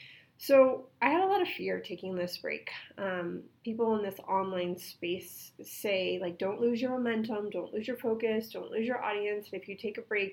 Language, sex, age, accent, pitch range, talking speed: English, female, 30-49, American, 185-240 Hz, 210 wpm